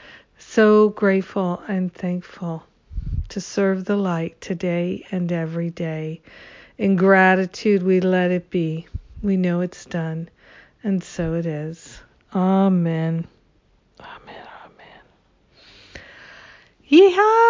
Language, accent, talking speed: English, American, 105 wpm